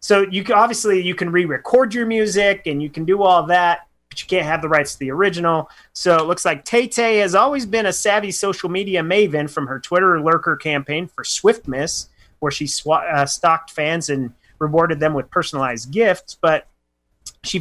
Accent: American